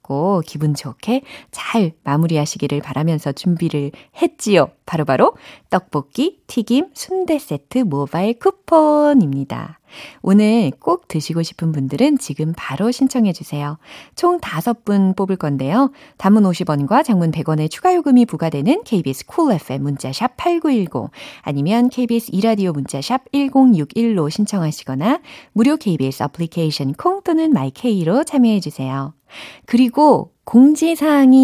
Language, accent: Korean, native